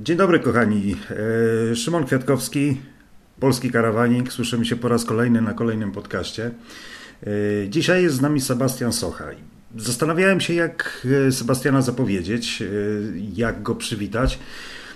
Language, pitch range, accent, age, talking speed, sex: Polish, 100-135 Hz, native, 40-59, 115 wpm, male